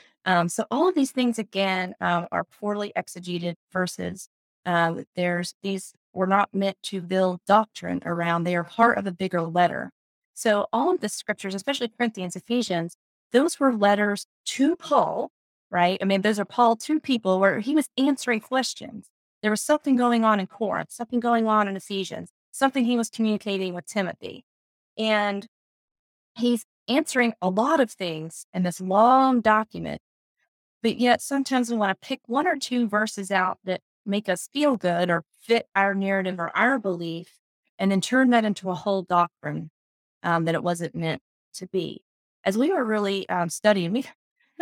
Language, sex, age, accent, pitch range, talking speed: English, female, 30-49, American, 185-245 Hz, 175 wpm